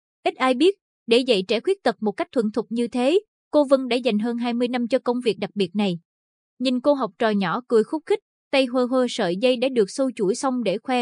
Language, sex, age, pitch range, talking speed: Vietnamese, female, 20-39, 205-265 Hz, 255 wpm